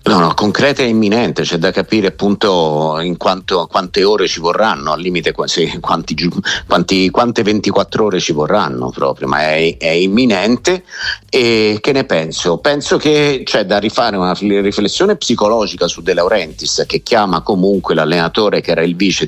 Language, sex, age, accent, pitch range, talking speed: Italian, male, 50-69, native, 95-125 Hz, 170 wpm